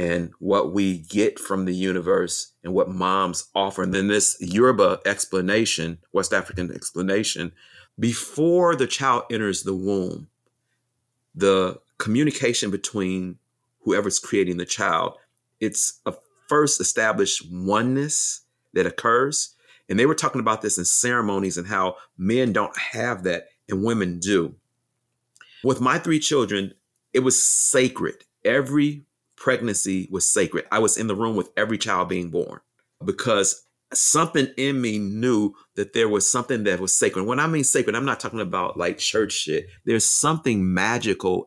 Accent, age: American, 40-59